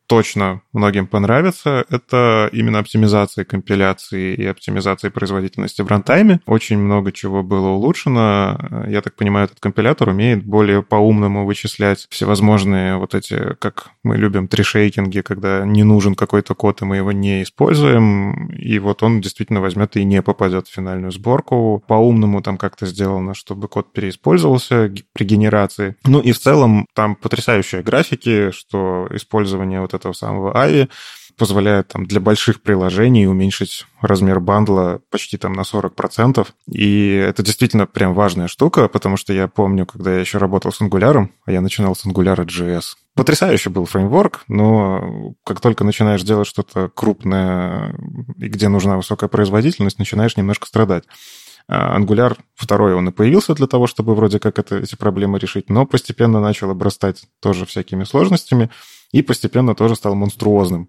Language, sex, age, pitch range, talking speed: Russian, male, 20-39, 95-110 Hz, 155 wpm